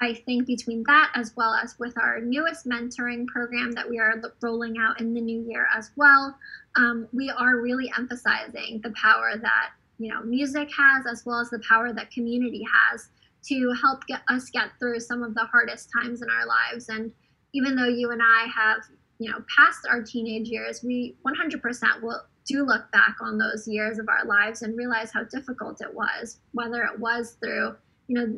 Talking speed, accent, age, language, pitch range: 200 wpm, American, 10-29, English, 225-245 Hz